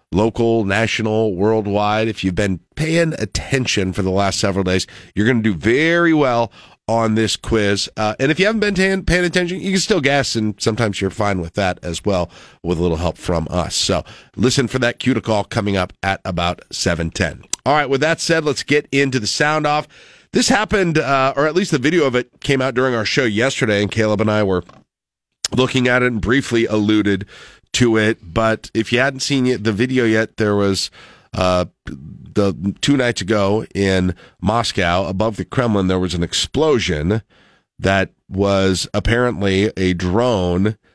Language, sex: English, male